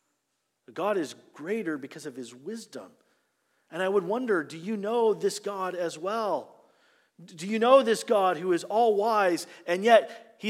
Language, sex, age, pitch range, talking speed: English, male, 40-59, 175-235 Hz, 165 wpm